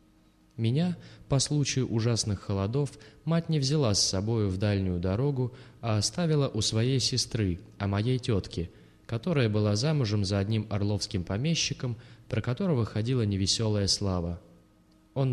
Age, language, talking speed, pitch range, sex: 20-39, Russian, 135 wpm, 100-130 Hz, male